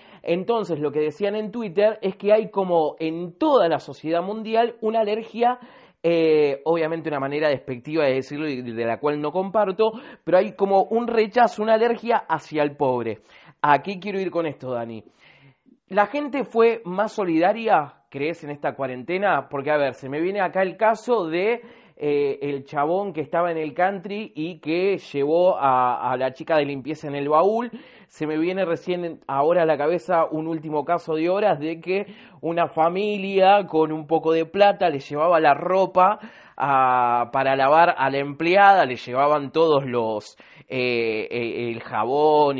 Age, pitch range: 20-39, 145-200 Hz